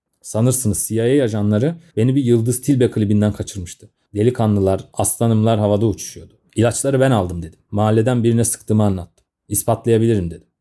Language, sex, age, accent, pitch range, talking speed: Turkish, male, 30-49, native, 100-120 Hz, 130 wpm